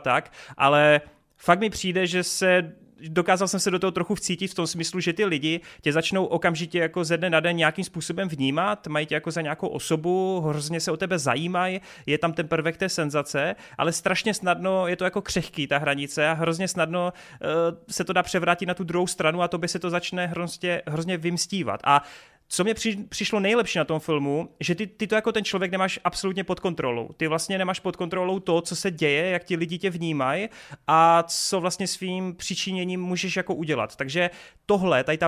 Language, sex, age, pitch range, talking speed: Czech, male, 30-49, 150-185 Hz, 210 wpm